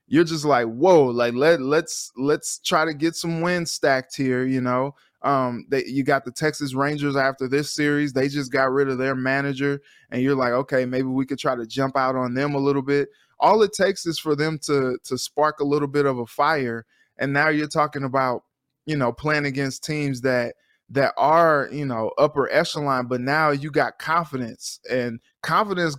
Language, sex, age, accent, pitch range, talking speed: English, male, 20-39, American, 130-150 Hz, 205 wpm